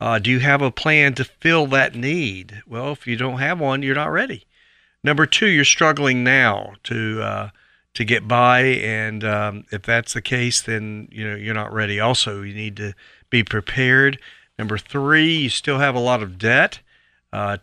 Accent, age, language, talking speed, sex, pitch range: American, 50-69, English, 195 wpm, male, 110-135 Hz